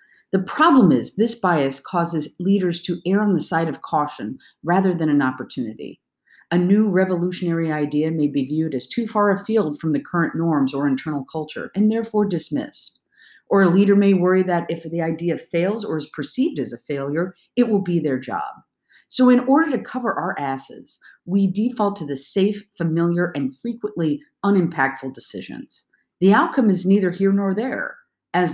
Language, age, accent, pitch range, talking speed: English, 50-69, American, 150-200 Hz, 180 wpm